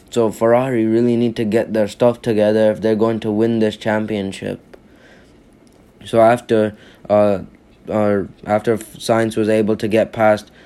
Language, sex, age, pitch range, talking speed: English, male, 20-39, 105-115 Hz, 150 wpm